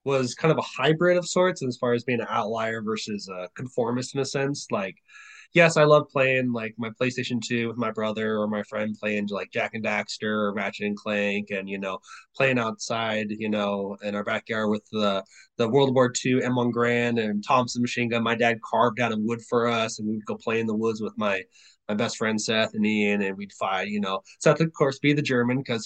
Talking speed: 230 wpm